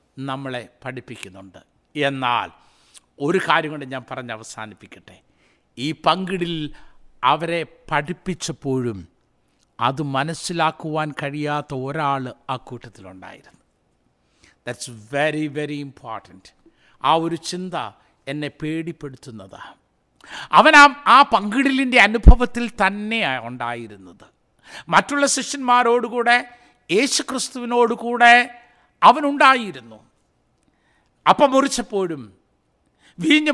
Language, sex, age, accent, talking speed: Malayalam, male, 50-69, native, 70 wpm